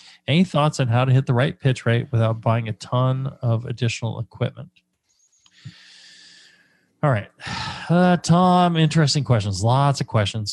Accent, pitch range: American, 115-135 Hz